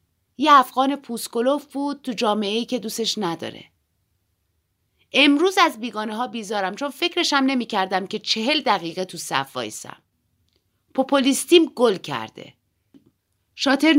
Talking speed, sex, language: 115 wpm, female, Persian